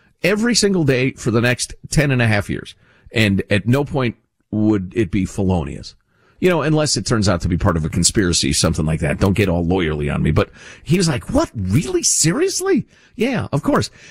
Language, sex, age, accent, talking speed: English, male, 50-69, American, 215 wpm